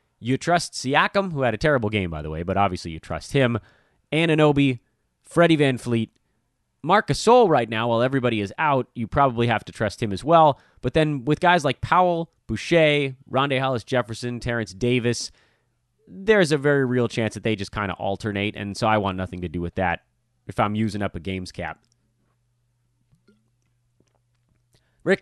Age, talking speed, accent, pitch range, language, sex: 30-49, 175 wpm, American, 110-155 Hz, English, male